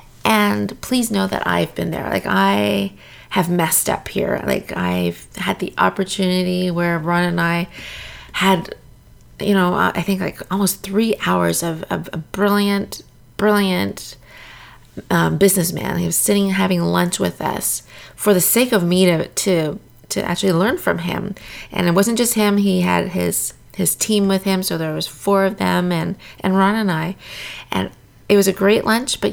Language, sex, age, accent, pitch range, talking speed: English, female, 30-49, American, 170-200 Hz, 180 wpm